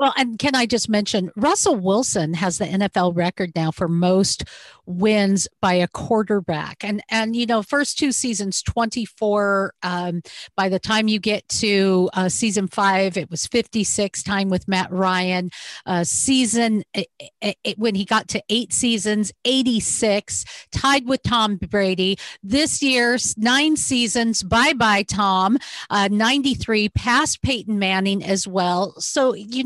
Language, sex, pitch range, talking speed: English, female, 195-240 Hz, 150 wpm